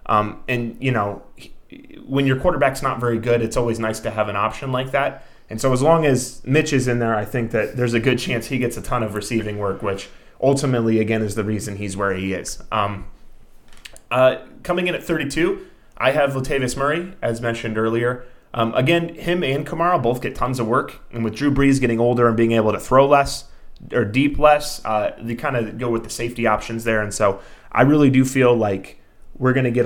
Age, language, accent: 20-39, English, American